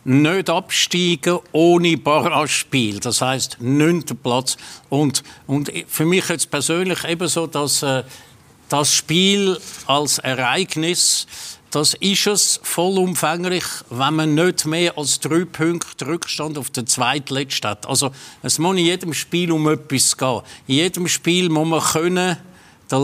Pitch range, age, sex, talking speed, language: 145-180 Hz, 50-69, male, 140 wpm, German